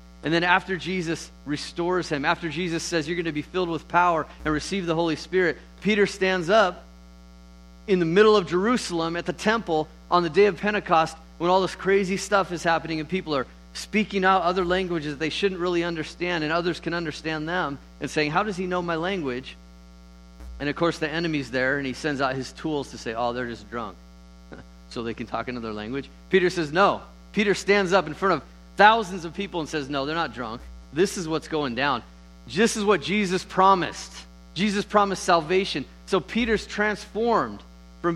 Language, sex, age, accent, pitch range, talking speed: English, male, 30-49, American, 125-190 Hz, 200 wpm